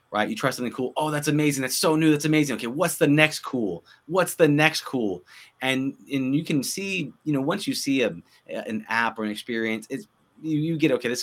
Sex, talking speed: male, 235 wpm